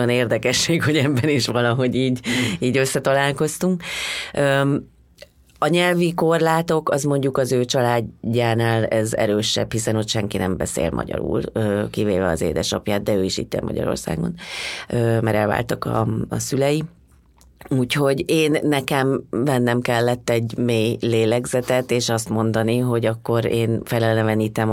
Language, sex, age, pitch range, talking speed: Hungarian, female, 30-49, 115-150 Hz, 130 wpm